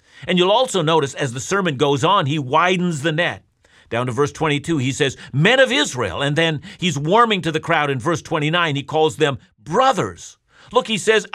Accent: American